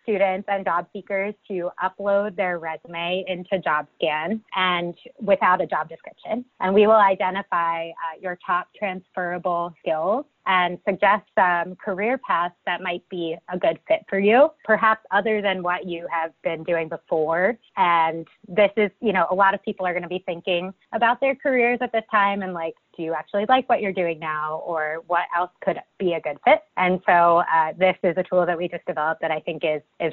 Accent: American